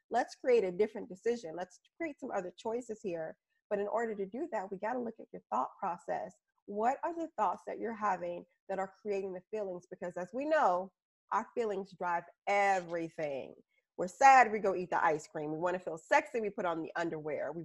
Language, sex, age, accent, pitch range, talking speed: English, female, 30-49, American, 190-240 Hz, 220 wpm